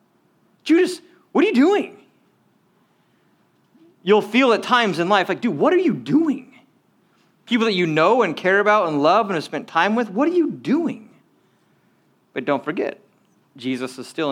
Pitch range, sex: 155-245 Hz, male